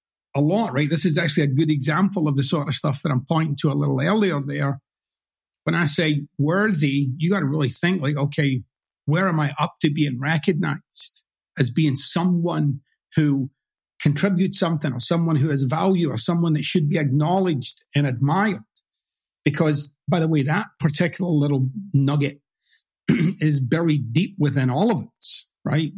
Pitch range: 145-175 Hz